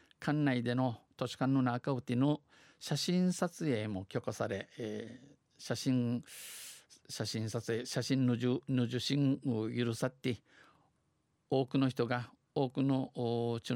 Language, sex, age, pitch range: Japanese, male, 50-69, 115-130 Hz